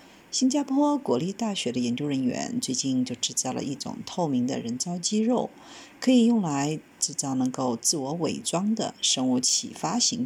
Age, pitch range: 50-69, 160-255 Hz